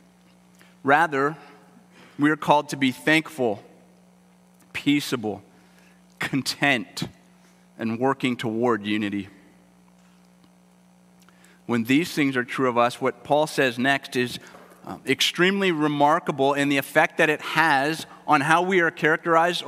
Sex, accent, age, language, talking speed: male, American, 40-59, English, 115 wpm